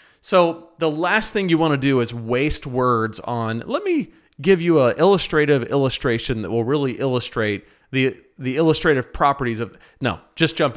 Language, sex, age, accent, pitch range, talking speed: English, male, 40-59, American, 120-165 Hz, 175 wpm